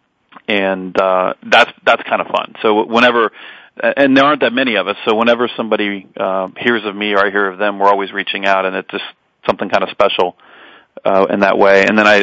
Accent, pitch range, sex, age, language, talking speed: American, 100-110 Hz, male, 40-59, English, 230 wpm